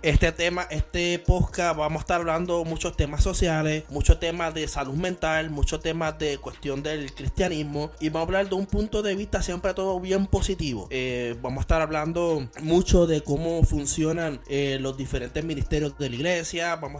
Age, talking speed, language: 20-39, 185 wpm, Spanish